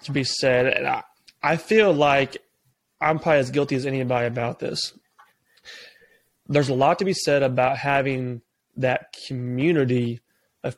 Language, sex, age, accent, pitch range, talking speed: English, male, 20-39, American, 130-150 Hz, 150 wpm